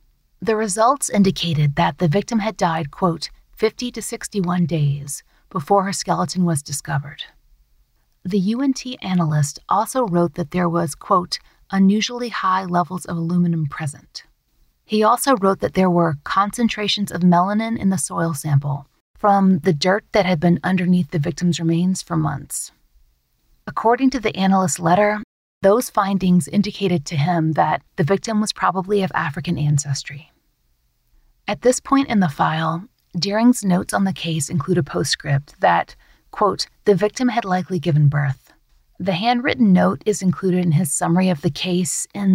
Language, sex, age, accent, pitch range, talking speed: English, female, 30-49, American, 160-205 Hz, 155 wpm